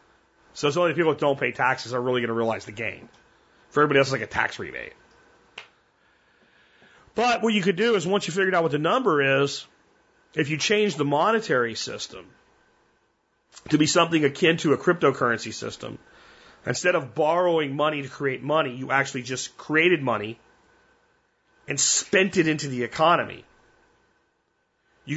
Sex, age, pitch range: male, 40-59, 135-200 Hz